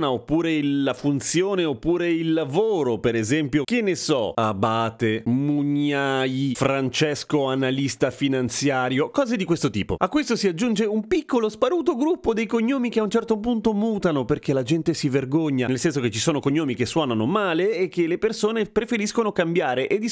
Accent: native